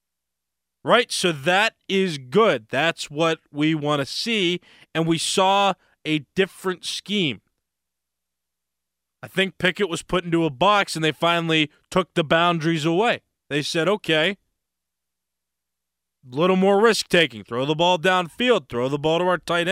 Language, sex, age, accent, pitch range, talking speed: English, male, 20-39, American, 145-190 Hz, 150 wpm